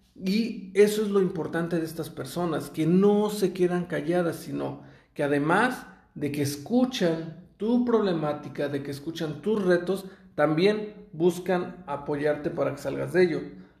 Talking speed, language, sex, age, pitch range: 150 wpm, Spanish, male, 40-59, 145-195 Hz